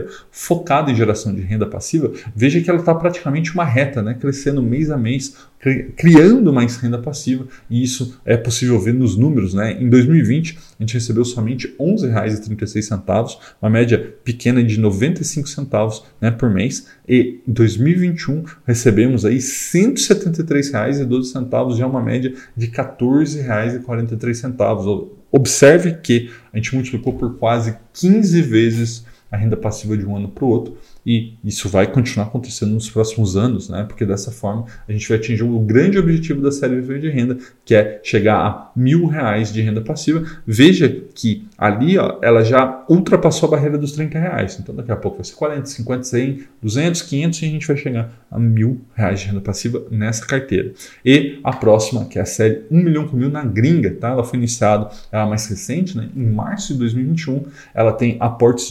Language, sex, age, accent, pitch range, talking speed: Portuguese, male, 20-39, Brazilian, 110-140 Hz, 180 wpm